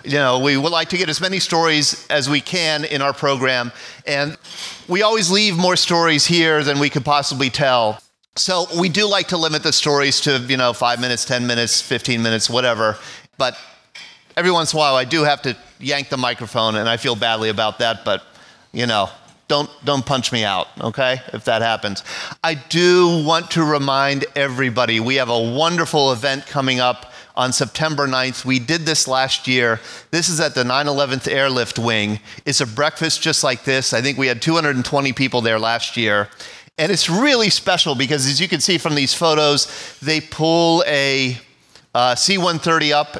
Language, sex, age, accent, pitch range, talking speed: English, male, 40-59, American, 125-155 Hz, 190 wpm